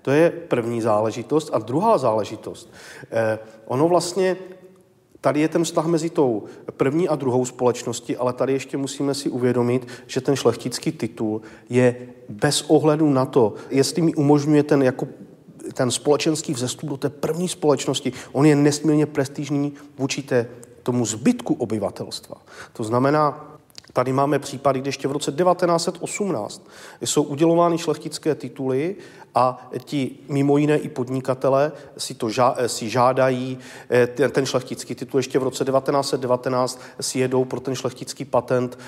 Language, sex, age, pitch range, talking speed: Czech, male, 40-59, 125-150 Hz, 145 wpm